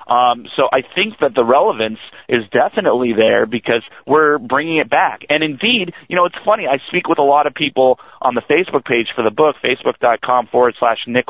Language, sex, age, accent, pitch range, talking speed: English, male, 30-49, American, 125-180 Hz, 205 wpm